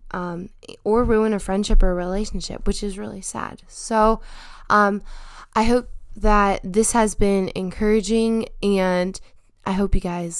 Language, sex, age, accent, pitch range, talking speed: English, female, 10-29, American, 190-230 Hz, 150 wpm